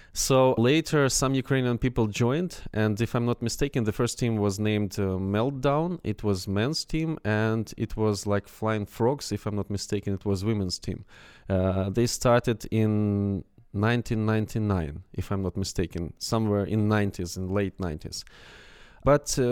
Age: 20-39